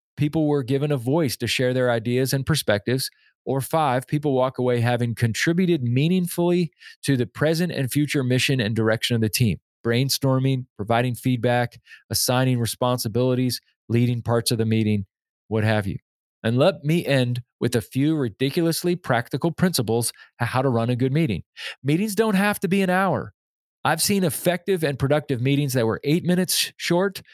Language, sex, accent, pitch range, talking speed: English, male, American, 120-155 Hz, 170 wpm